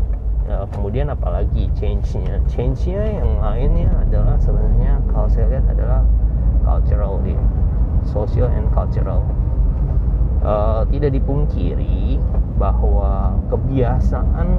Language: Indonesian